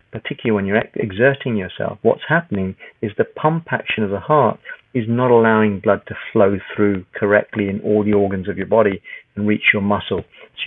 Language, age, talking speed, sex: English, 40-59, 190 wpm, male